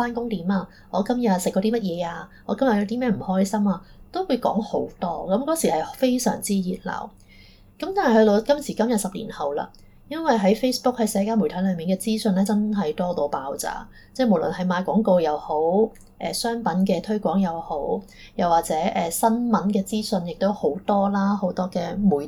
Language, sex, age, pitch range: Chinese, female, 20-39, 185-225 Hz